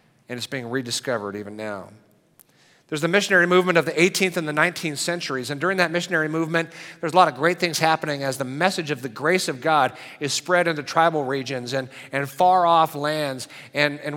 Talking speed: 210 wpm